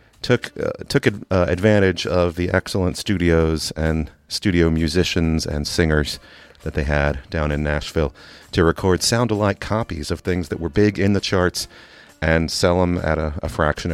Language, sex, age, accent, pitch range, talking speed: English, male, 40-59, American, 80-105 Hz, 170 wpm